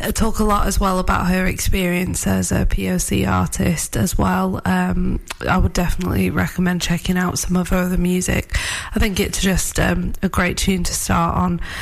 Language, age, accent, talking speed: English, 20-39, British, 190 wpm